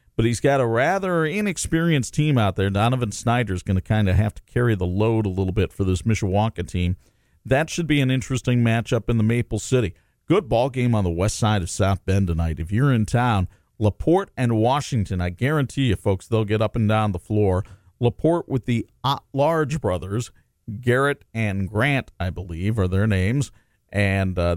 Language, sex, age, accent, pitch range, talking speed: English, male, 40-59, American, 100-130 Hz, 200 wpm